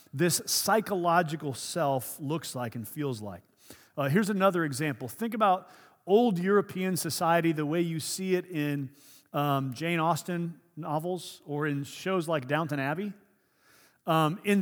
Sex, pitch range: male, 145-190 Hz